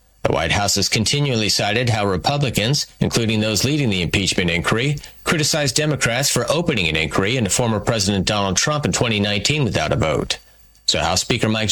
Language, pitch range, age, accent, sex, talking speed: English, 100-140 Hz, 40-59, American, male, 175 wpm